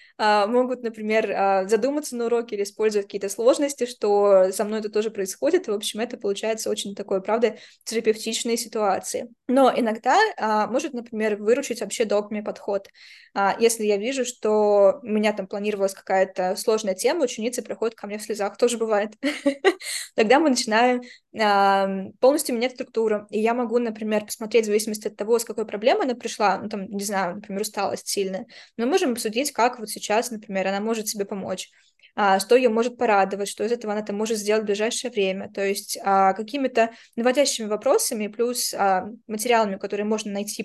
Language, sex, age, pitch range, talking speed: Russian, female, 20-39, 205-240 Hz, 170 wpm